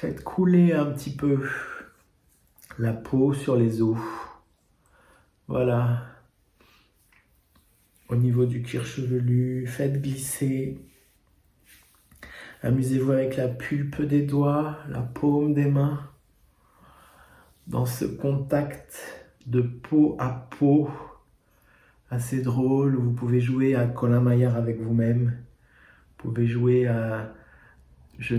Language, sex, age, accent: French, male, 50-69, French